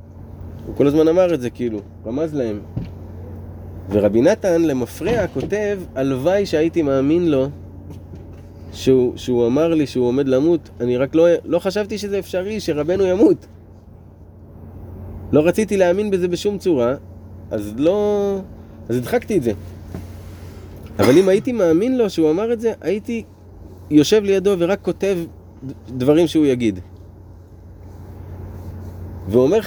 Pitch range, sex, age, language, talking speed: 95-150 Hz, male, 30-49, Hebrew, 125 wpm